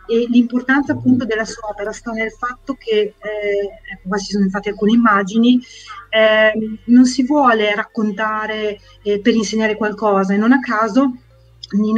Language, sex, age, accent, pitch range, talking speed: Italian, female, 30-49, native, 200-240 Hz, 160 wpm